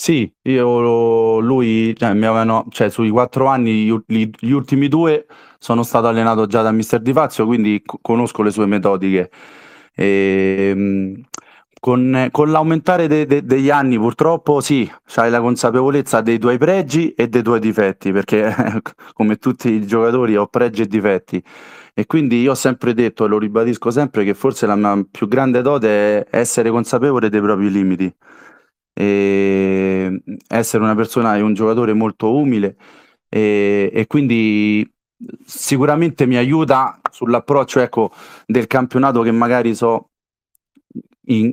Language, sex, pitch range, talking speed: Italian, male, 105-125 Hz, 150 wpm